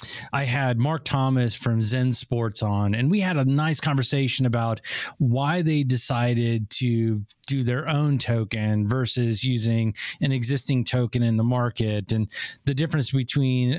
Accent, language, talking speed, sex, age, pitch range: American, English, 150 wpm, male, 30-49, 115-140 Hz